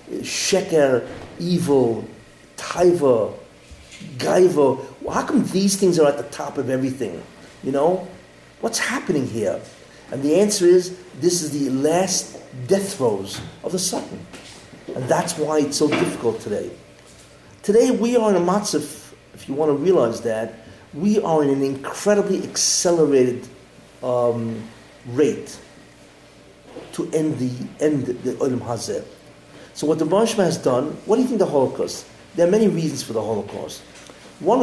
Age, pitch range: 50-69, 125-175 Hz